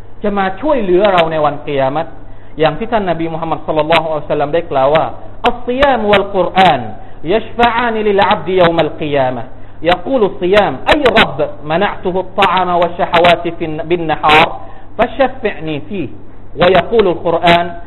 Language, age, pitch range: Thai, 50-69, 150-225 Hz